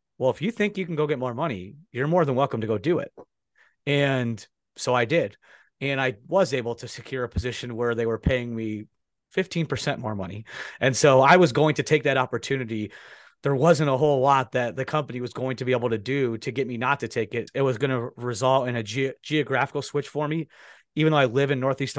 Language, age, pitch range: English, 30-49, 120-145 Hz